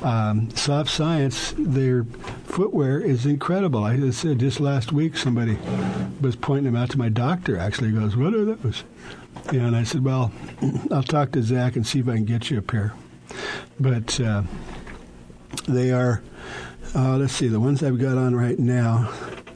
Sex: male